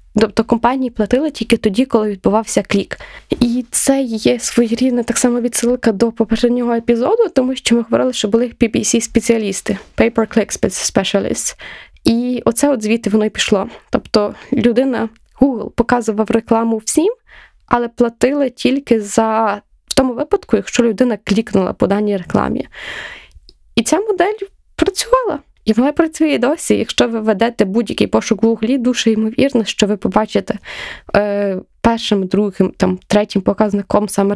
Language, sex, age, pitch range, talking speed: Ukrainian, female, 20-39, 210-250 Hz, 140 wpm